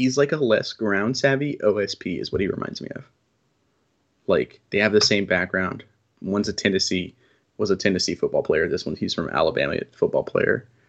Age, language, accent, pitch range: 20-39, English, American, 110-160 Hz